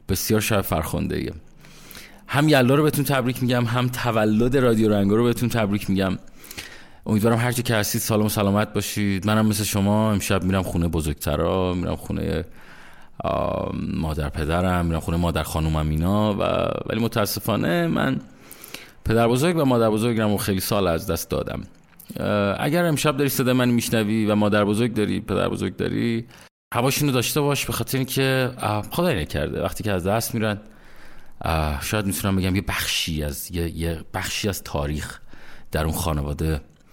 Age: 30-49